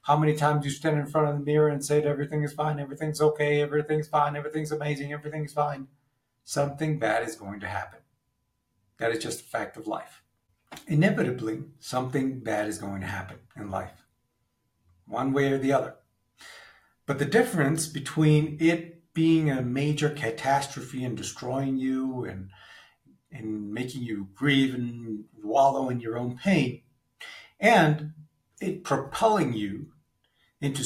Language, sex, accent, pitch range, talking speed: English, male, American, 125-155 Hz, 150 wpm